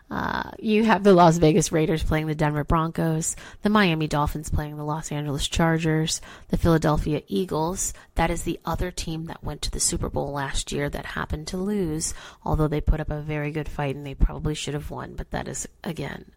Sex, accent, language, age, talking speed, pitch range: female, American, English, 30-49, 210 wpm, 150-175 Hz